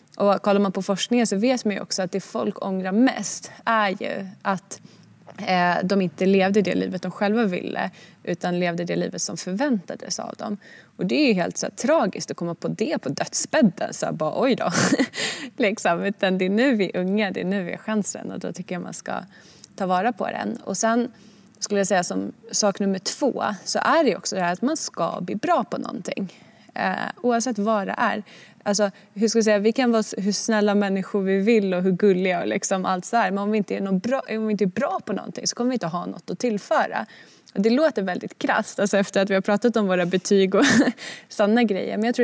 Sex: female